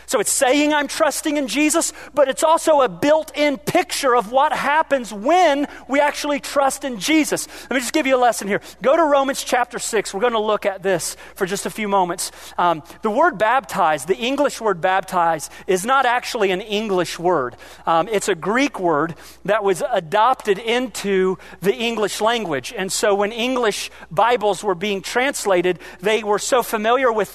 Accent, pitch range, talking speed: American, 185-245 Hz, 185 wpm